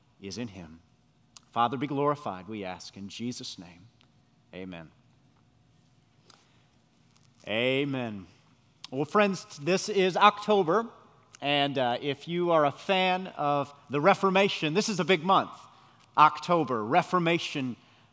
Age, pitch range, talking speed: 40-59, 140-195 Hz, 115 wpm